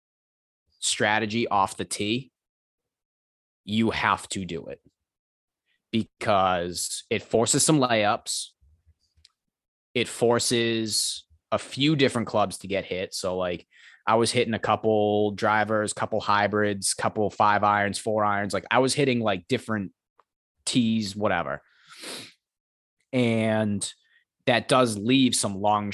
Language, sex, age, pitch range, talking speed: English, male, 20-39, 95-115 Hz, 125 wpm